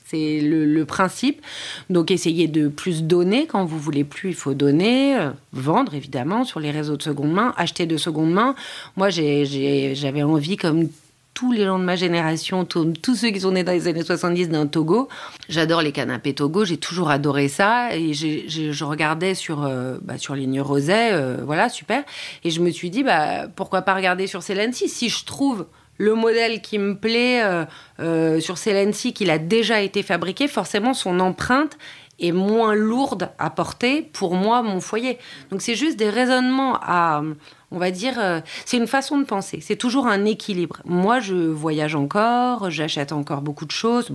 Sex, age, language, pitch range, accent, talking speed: female, 40-59, French, 155-215 Hz, French, 200 wpm